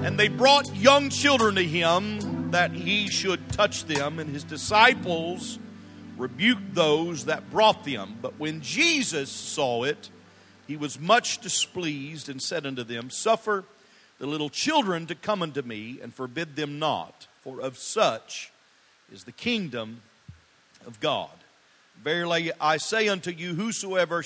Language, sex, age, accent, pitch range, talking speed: English, male, 50-69, American, 130-185 Hz, 145 wpm